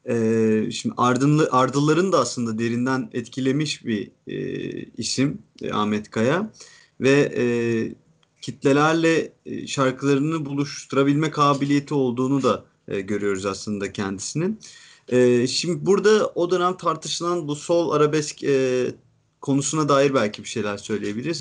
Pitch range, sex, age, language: 115-145 Hz, male, 40-59, Turkish